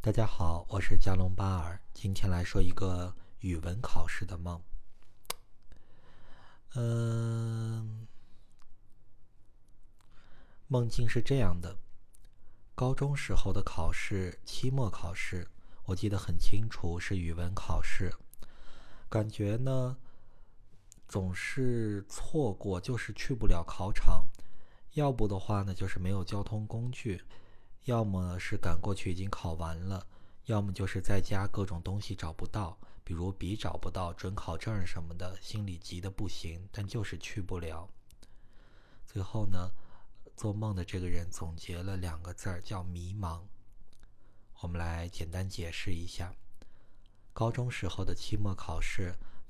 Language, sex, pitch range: Chinese, male, 90-105 Hz